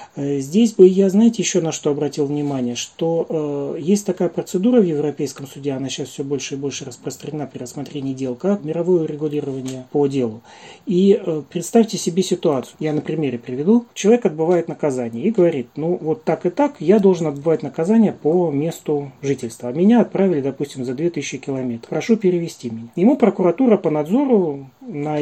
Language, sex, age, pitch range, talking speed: Russian, male, 30-49, 140-185 Hz, 170 wpm